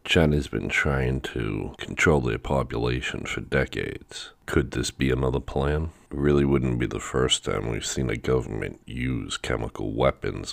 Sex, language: male, English